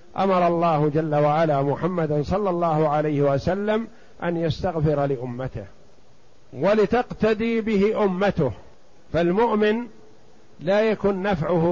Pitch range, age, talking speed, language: 145-190 Hz, 50-69, 95 wpm, Arabic